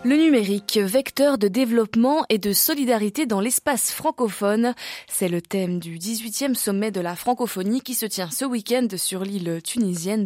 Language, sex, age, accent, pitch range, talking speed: French, female, 20-39, French, 195-255 Hz, 165 wpm